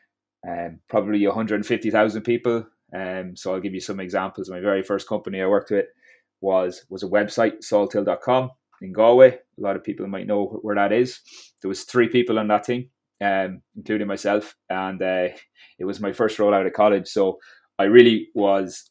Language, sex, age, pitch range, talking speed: English, male, 20-39, 90-105 Hz, 185 wpm